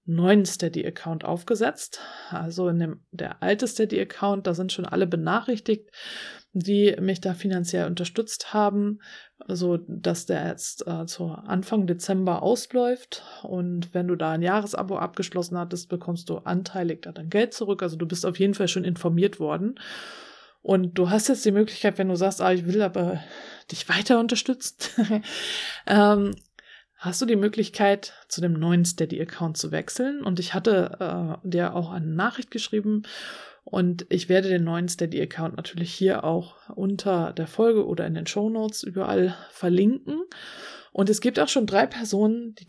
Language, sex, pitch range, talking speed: German, female, 175-215 Hz, 165 wpm